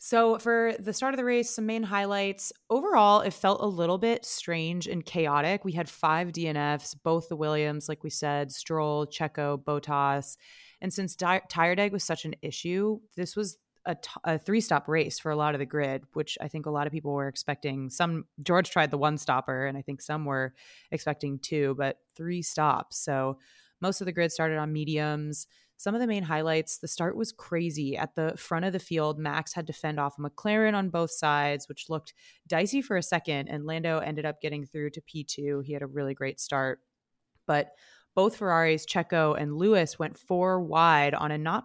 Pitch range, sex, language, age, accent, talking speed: 145-180 Hz, female, English, 30-49, American, 205 wpm